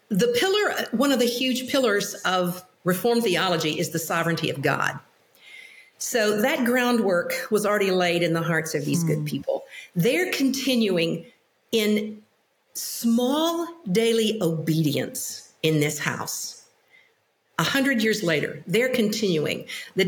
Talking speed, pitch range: 130 wpm, 180-240 Hz